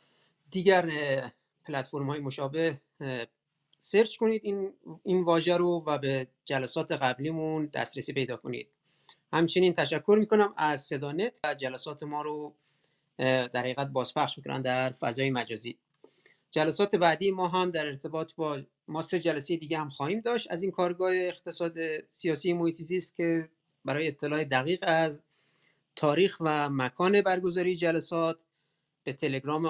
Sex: male